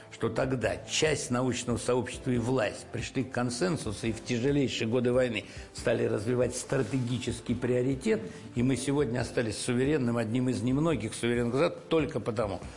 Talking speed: 145 wpm